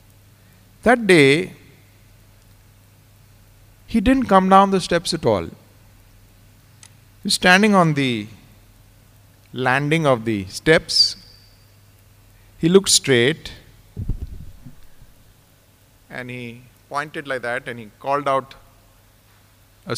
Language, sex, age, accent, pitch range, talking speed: English, male, 50-69, Indian, 105-150 Hz, 95 wpm